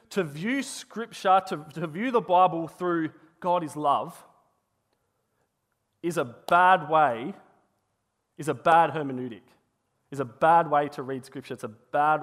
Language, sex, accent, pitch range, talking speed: English, male, Australian, 135-185 Hz, 145 wpm